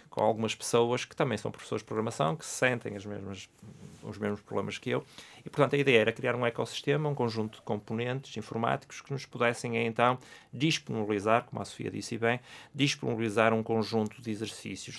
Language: English